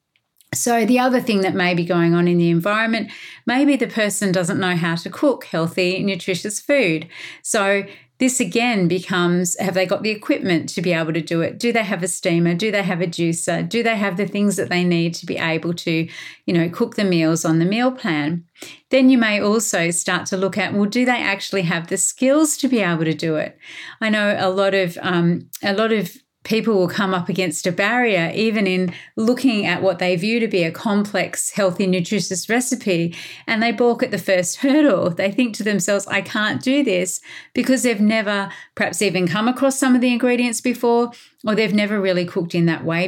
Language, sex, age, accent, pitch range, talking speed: English, female, 40-59, Australian, 180-225 Hz, 215 wpm